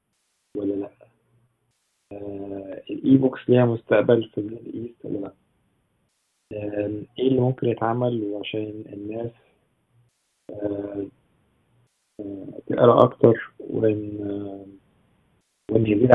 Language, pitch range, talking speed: Arabic, 100-120 Hz, 90 wpm